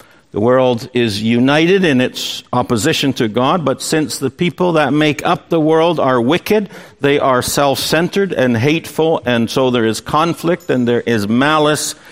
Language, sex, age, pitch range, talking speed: English, male, 60-79, 115-150 Hz, 170 wpm